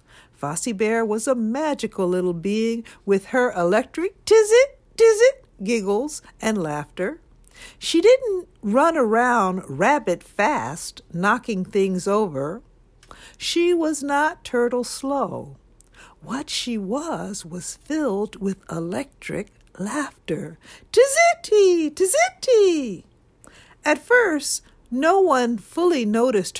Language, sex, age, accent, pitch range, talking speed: English, female, 60-79, American, 160-260 Hz, 100 wpm